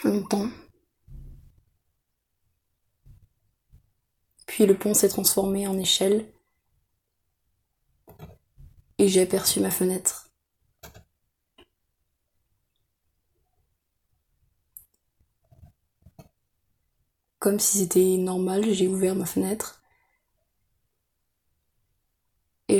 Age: 20-39